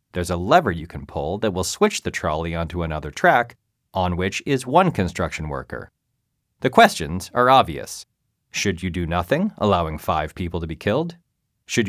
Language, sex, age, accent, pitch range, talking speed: English, male, 30-49, American, 85-120 Hz, 175 wpm